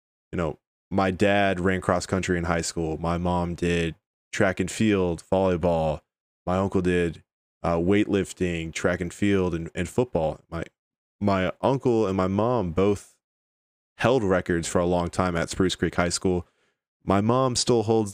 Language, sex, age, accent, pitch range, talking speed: English, male, 20-39, American, 85-95 Hz, 165 wpm